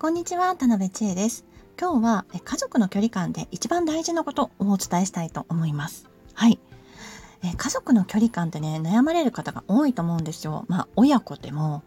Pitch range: 170-230 Hz